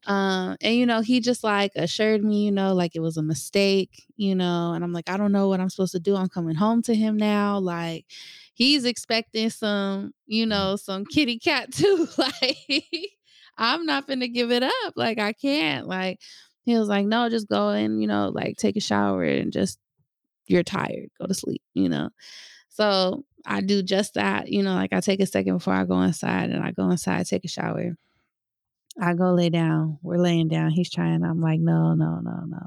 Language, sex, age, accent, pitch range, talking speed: English, female, 20-39, American, 170-230 Hz, 215 wpm